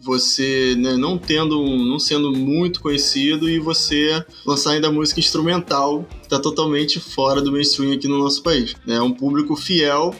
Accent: Brazilian